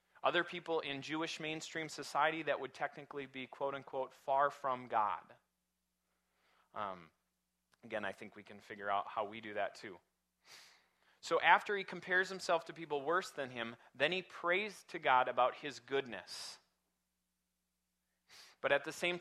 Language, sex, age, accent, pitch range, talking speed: English, male, 30-49, American, 110-160 Hz, 155 wpm